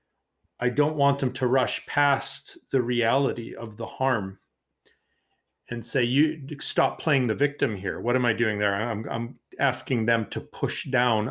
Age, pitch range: 40-59, 120-140 Hz